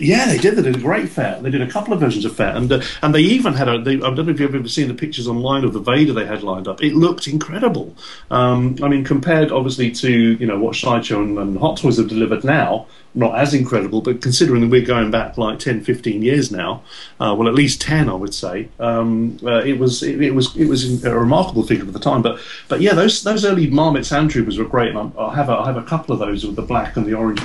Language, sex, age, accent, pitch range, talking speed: English, male, 40-59, British, 115-140 Hz, 270 wpm